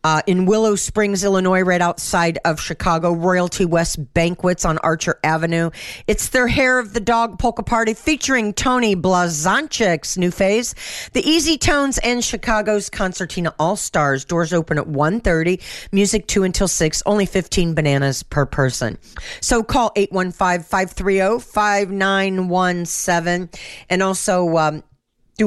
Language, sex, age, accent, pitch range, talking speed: English, female, 40-59, American, 155-200 Hz, 130 wpm